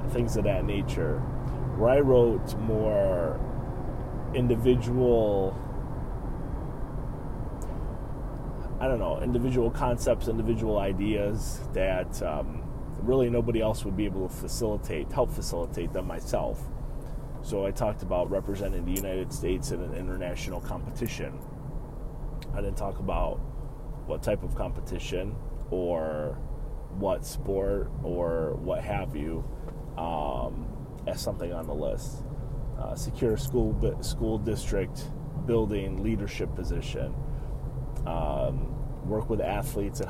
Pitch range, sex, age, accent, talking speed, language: 100-125 Hz, male, 30-49, American, 115 wpm, English